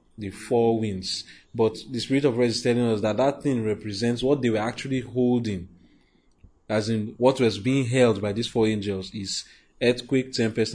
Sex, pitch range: male, 105-120 Hz